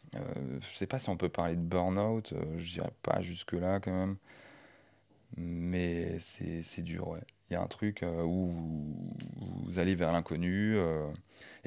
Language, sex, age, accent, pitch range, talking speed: French, male, 20-39, French, 85-105 Hz, 190 wpm